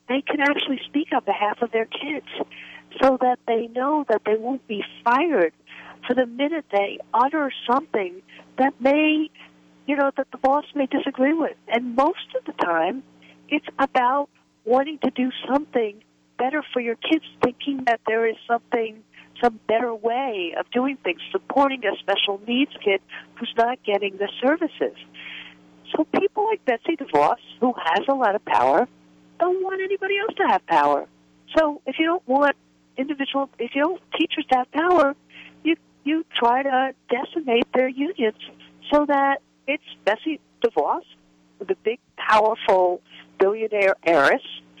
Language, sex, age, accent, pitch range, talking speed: English, female, 50-69, American, 225-300 Hz, 160 wpm